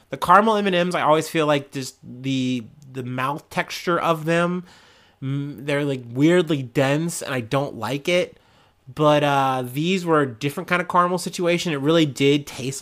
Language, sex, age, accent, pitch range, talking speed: English, male, 30-49, American, 135-175 Hz, 175 wpm